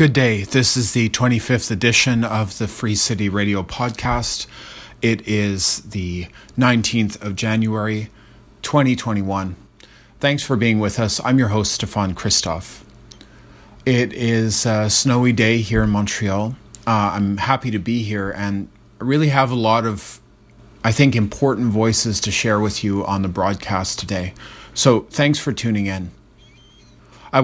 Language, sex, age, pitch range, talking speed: English, male, 30-49, 105-125 Hz, 150 wpm